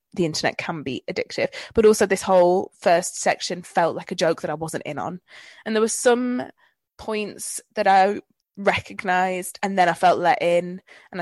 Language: English